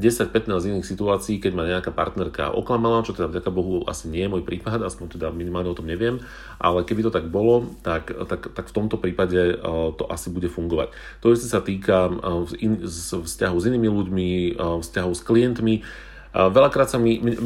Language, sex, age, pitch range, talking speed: Slovak, male, 40-59, 90-110 Hz, 210 wpm